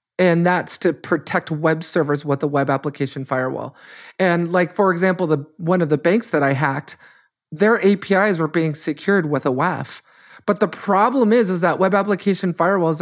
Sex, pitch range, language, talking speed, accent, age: male, 155-190 Hz, English, 185 wpm, American, 30-49